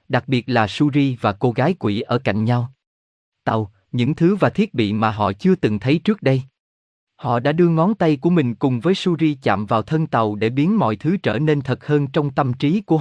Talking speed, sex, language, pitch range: 230 wpm, male, Vietnamese, 110-155 Hz